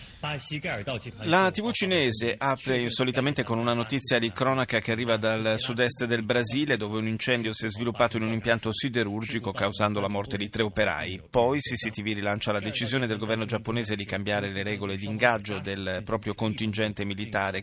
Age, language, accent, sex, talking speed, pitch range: 30-49, Italian, native, male, 170 wpm, 100-125 Hz